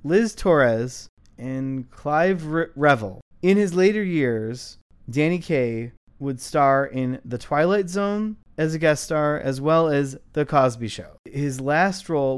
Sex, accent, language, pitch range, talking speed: male, American, English, 120-155 Hz, 145 wpm